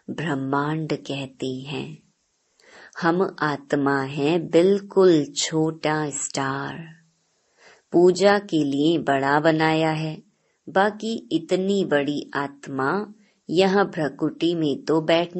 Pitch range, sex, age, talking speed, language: 145-180 Hz, male, 20-39, 95 wpm, Hindi